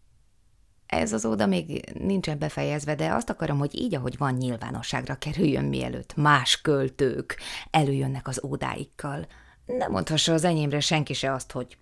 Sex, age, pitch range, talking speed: female, 20-39, 175-290 Hz, 145 wpm